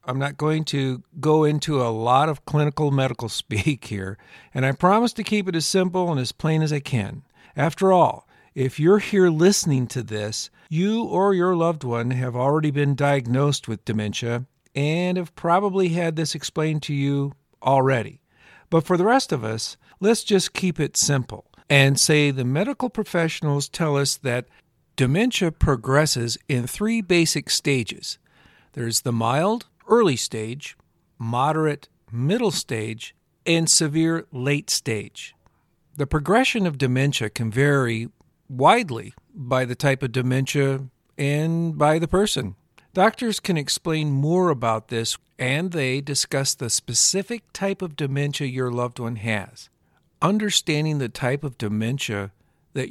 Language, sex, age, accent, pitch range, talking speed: English, male, 50-69, American, 125-165 Hz, 150 wpm